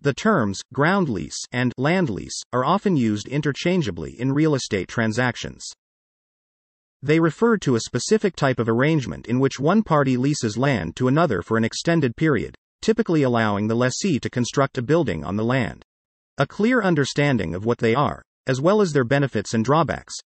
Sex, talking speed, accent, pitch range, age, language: male, 175 wpm, American, 115-160 Hz, 40-59, English